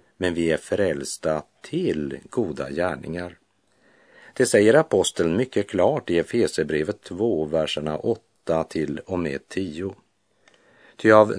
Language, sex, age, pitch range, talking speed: Swedish, male, 50-69, 80-115 Hz, 120 wpm